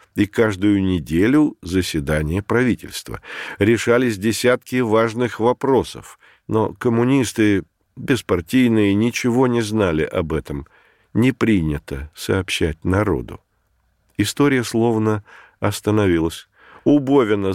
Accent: native